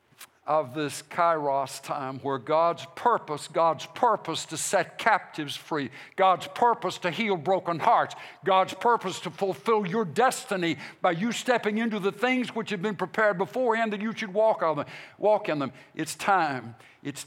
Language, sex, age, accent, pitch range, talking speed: English, male, 60-79, American, 150-195 Hz, 165 wpm